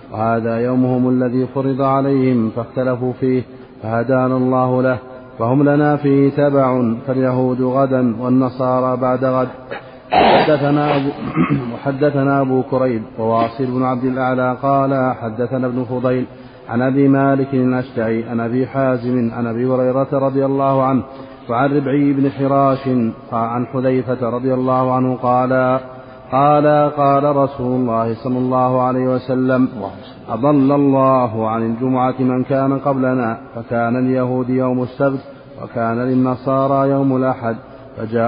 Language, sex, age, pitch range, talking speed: Arabic, male, 30-49, 125-135 Hz, 125 wpm